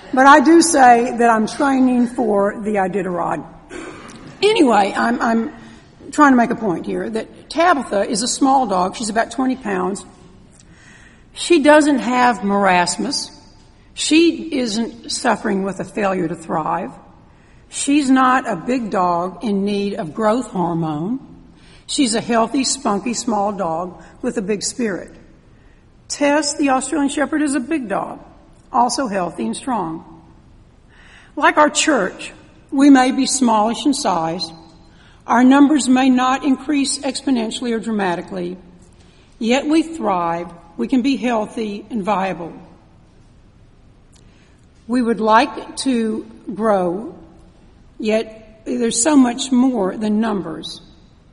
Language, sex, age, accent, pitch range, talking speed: English, female, 60-79, American, 195-270 Hz, 130 wpm